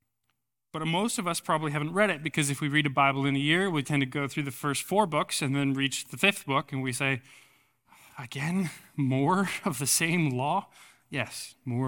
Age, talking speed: 20-39, 215 wpm